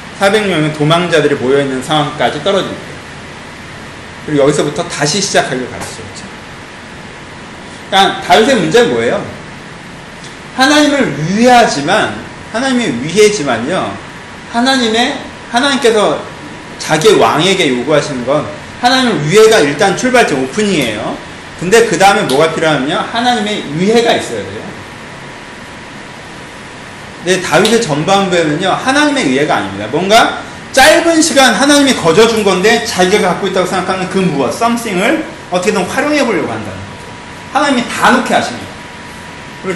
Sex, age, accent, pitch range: male, 30-49, native, 175-240 Hz